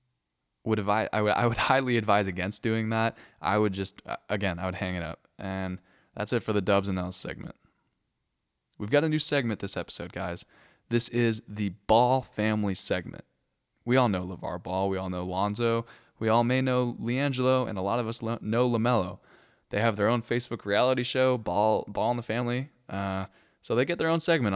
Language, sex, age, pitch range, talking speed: English, male, 20-39, 95-120 Hz, 205 wpm